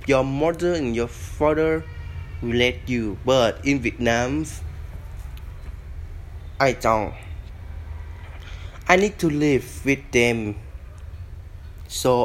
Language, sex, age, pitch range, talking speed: Vietnamese, male, 20-39, 85-140 Hz, 100 wpm